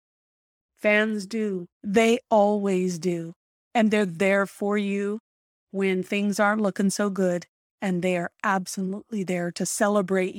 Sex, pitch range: female, 190-235 Hz